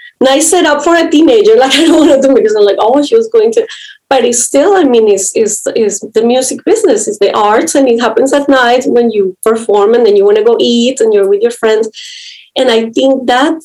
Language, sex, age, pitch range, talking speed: English, female, 30-49, 210-270 Hz, 275 wpm